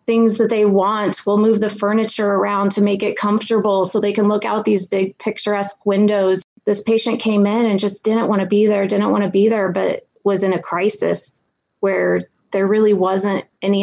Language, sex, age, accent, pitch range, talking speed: English, female, 30-49, American, 190-220 Hz, 210 wpm